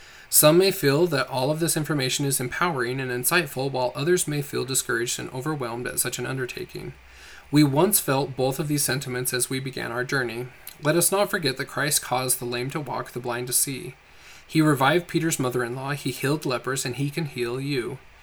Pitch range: 125-150 Hz